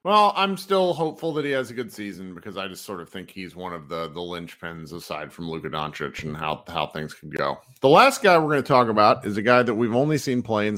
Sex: male